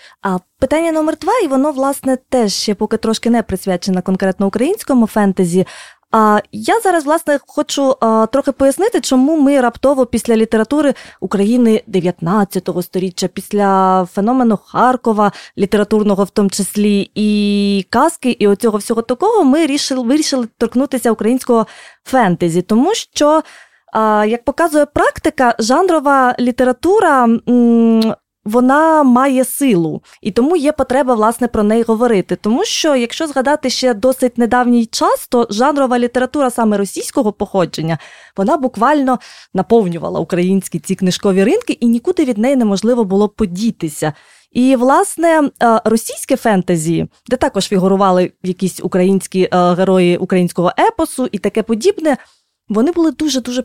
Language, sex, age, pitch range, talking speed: Ukrainian, female, 20-39, 200-270 Hz, 130 wpm